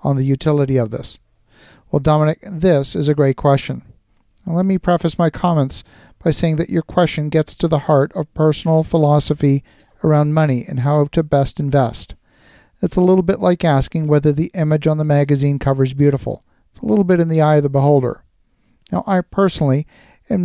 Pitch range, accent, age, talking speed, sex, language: 140-165 Hz, American, 50-69, 190 wpm, male, English